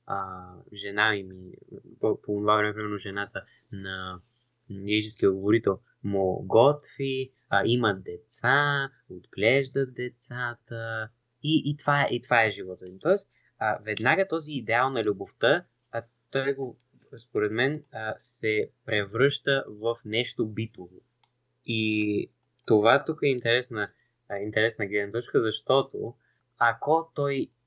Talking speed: 125 wpm